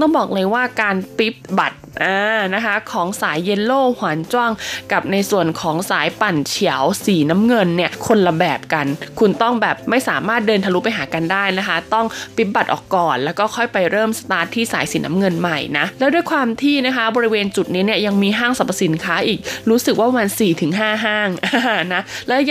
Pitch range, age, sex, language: 185-240 Hz, 20-39, female, Thai